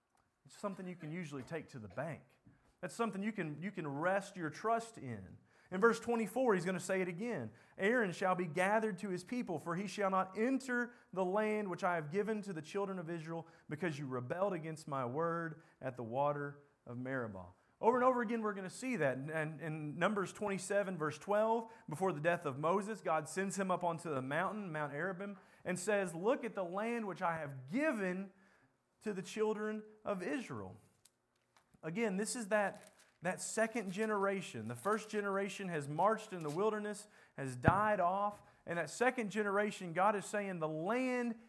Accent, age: American, 30-49